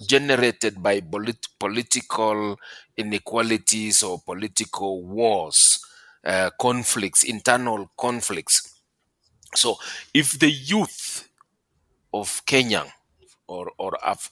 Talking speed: 85 wpm